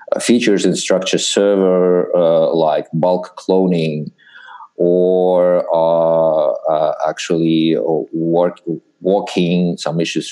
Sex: male